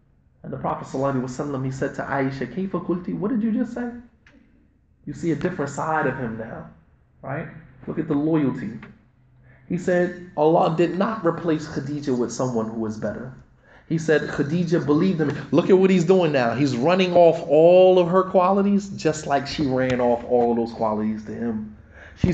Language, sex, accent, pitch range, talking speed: English, male, American, 130-180 Hz, 185 wpm